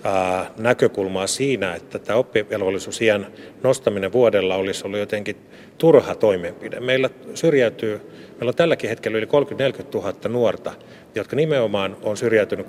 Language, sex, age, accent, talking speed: Finnish, male, 30-49, native, 125 wpm